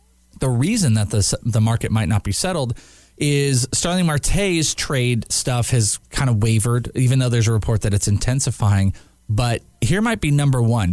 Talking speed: 180 wpm